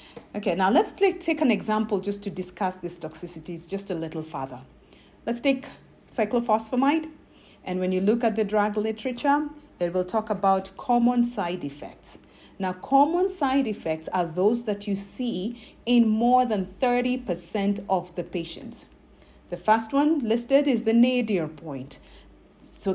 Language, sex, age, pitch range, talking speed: English, female, 40-59, 180-240 Hz, 150 wpm